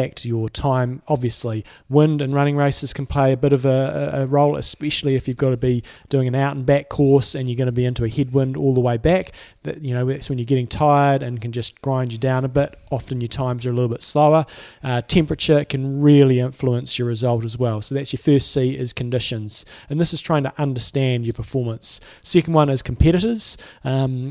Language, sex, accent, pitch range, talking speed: English, male, Australian, 125-150 Hz, 230 wpm